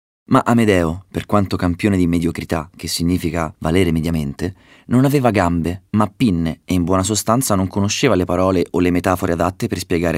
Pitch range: 85-110 Hz